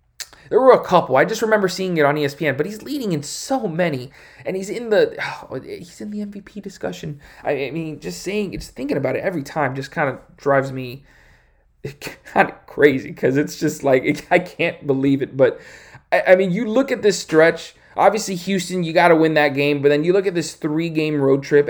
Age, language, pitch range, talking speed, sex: 20-39, English, 140-180 Hz, 220 wpm, male